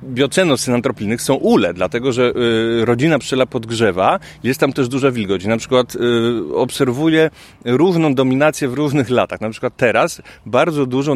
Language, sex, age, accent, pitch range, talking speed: Polish, male, 30-49, native, 125-145 Hz, 150 wpm